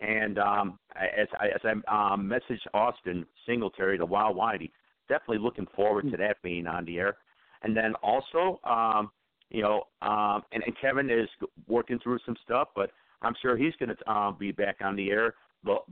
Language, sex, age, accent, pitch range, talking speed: English, male, 50-69, American, 105-125 Hz, 180 wpm